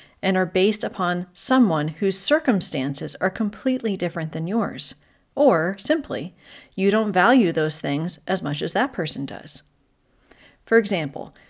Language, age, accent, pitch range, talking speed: English, 40-59, American, 160-215 Hz, 140 wpm